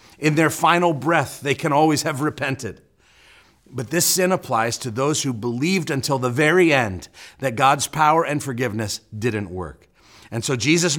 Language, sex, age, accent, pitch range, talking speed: English, male, 40-59, American, 115-165 Hz, 170 wpm